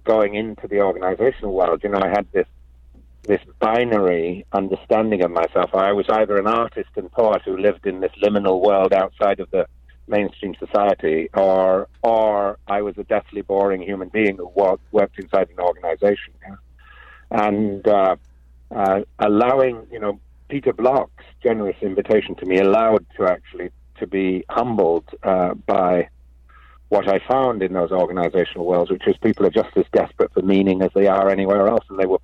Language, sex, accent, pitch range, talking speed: English, male, British, 90-110 Hz, 170 wpm